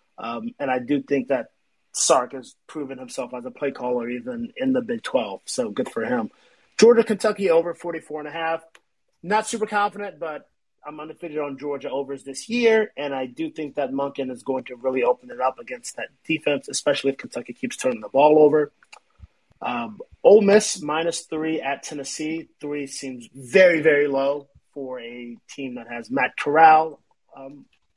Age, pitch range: 30-49, 135-185 Hz